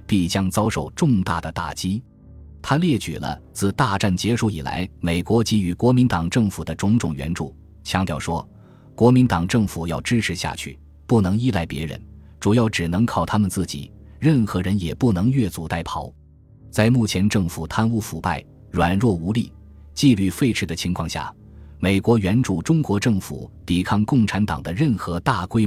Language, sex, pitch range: Chinese, male, 80-110 Hz